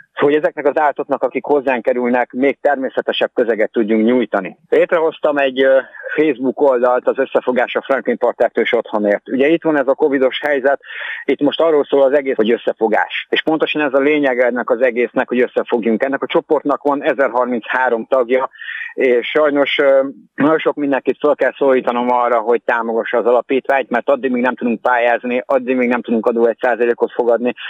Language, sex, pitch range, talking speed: Hungarian, male, 120-145 Hz, 175 wpm